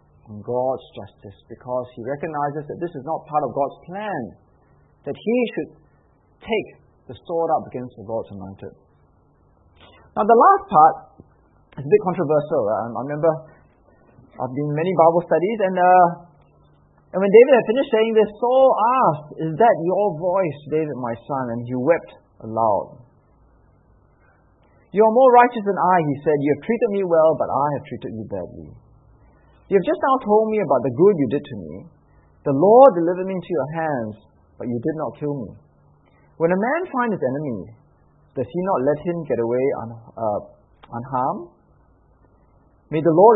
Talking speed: 175 wpm